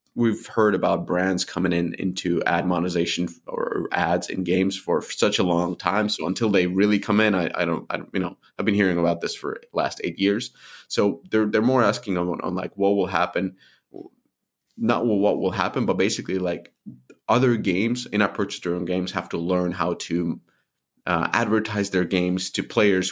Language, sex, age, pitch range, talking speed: English, male, 20-39, 90-105 Hz, 200 wpm